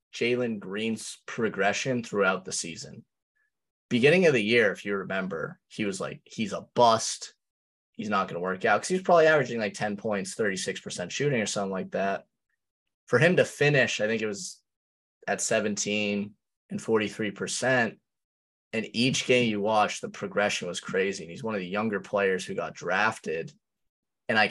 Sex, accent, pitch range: male, American, 100-155 Hz